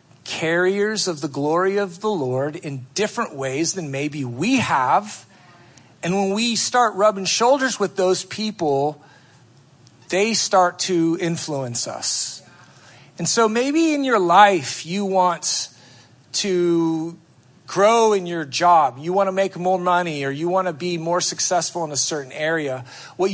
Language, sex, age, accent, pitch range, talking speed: English, male, 40-59, American, 145-195 Hz, 150 wpm